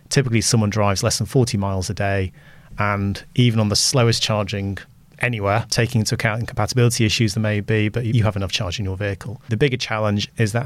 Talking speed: 210 wpm